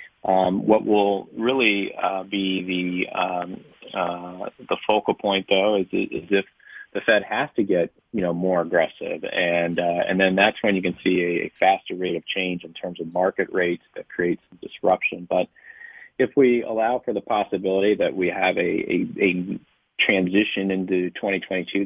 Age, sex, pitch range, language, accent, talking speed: 40-59, male, 90-100 Hz, English, American, 180 wpm